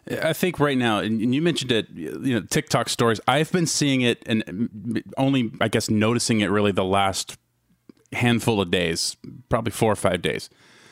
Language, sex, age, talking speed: English, male, 30-49, 180 wpm